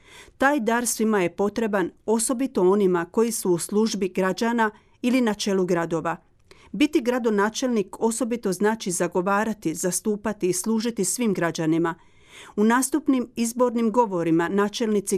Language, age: Croatian, 40-59